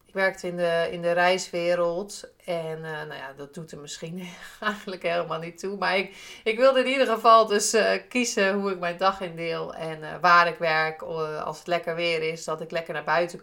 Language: Dutch